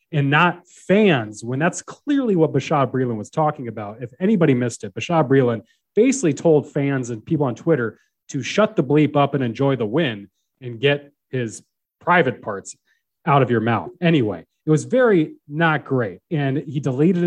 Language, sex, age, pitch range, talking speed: English, male, 30-49, 125-160 Hz, 180 wpm